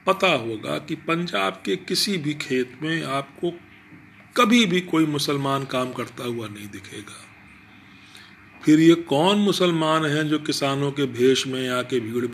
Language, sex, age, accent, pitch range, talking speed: Hindi, male, 40-59, native, 105-165 Hz, 150 wpm